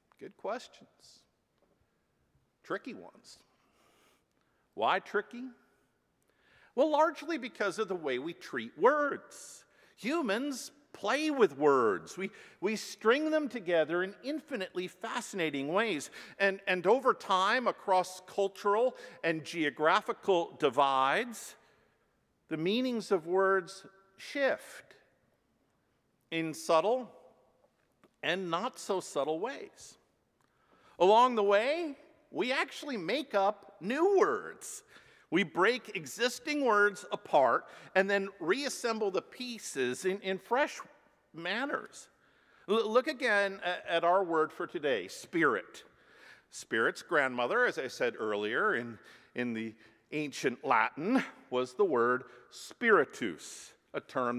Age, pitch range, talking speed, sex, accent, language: 50-69, 170-260 Hz, 105 wpm, male, American, English